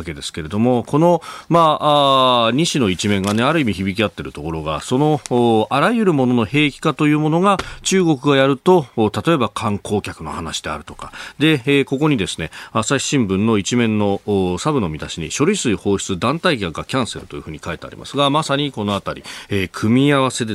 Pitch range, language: 95-130 Hz, Japanese